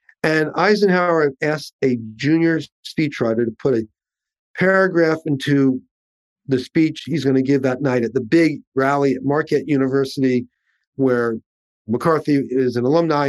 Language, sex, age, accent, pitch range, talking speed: English, male, 40-59, American, 125-155 Hz, 140 wpm